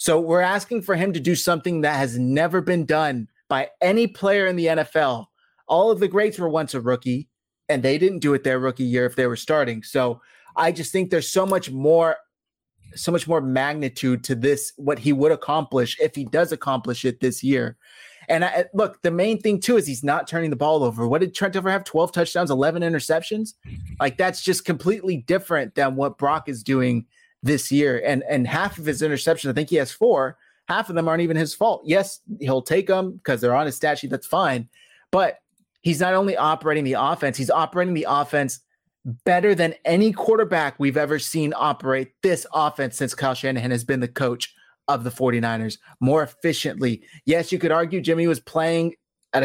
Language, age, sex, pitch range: English, 20-39, male, 135-180 Hz